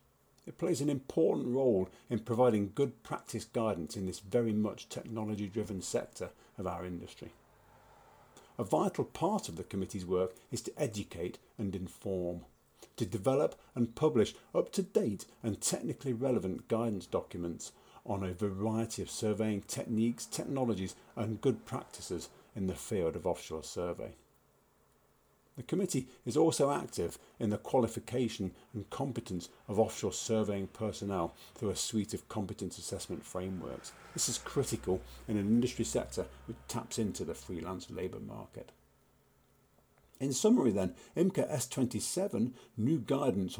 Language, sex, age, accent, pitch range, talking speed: English, male, 50-69, British, 95-120 Hz, 135 wpm